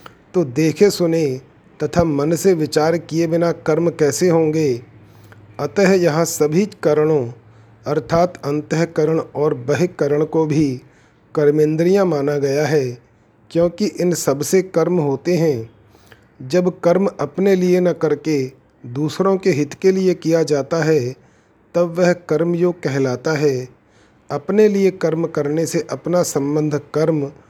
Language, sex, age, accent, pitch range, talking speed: Hindi, male, 40-59, native, 135-170 Hz, 135 wpm